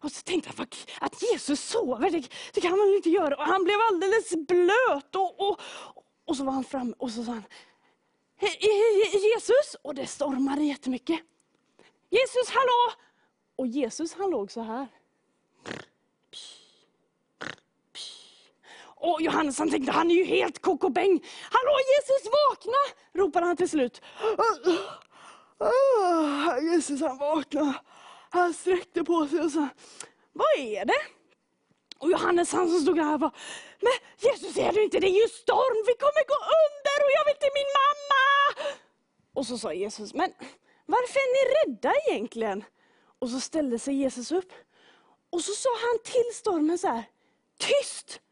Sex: female